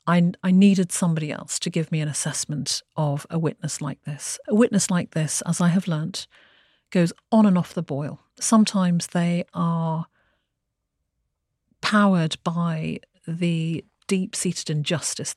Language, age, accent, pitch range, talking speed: English, 50-69, British, 155-190 Hz, 145 wpm